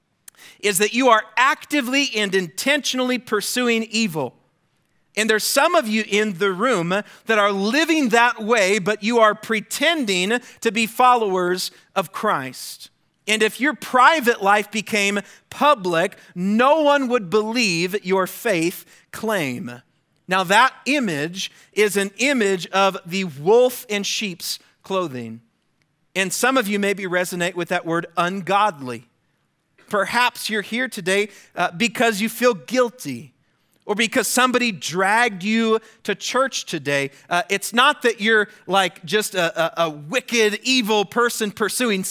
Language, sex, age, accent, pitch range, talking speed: English, male, 40-59, American, 185-245 Hz, 140 wpm